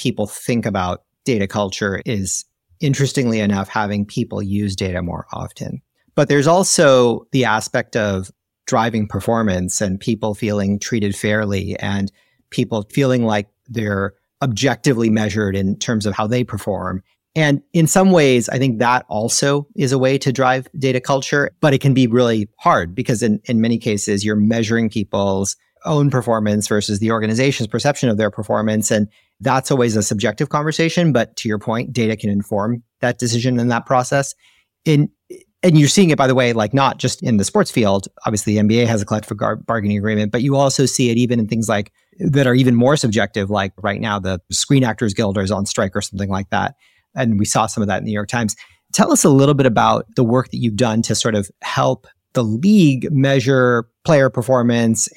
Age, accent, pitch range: 40-59, American, 105-130 Hz